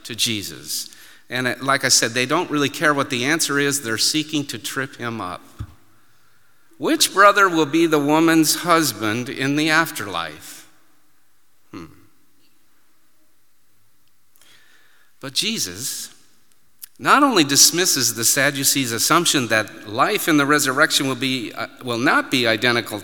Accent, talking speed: American, 135 wpm